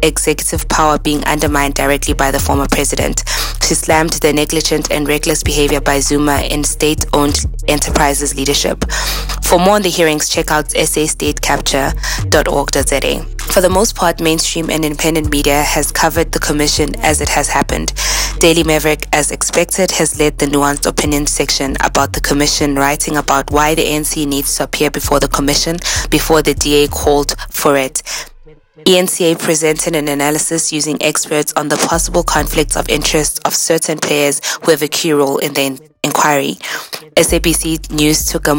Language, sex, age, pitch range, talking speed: English, female, 20-39, 145-160 Hz, 160 wpm